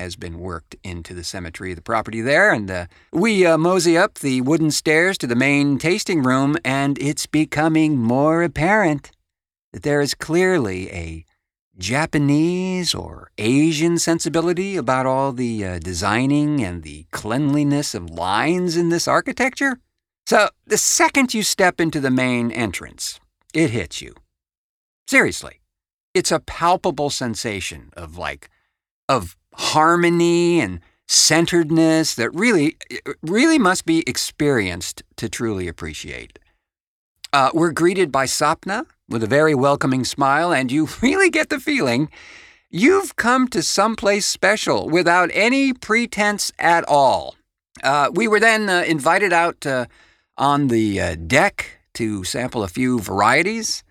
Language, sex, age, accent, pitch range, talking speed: English, male, 50-69, American, 110-175 Hz, 140 wpm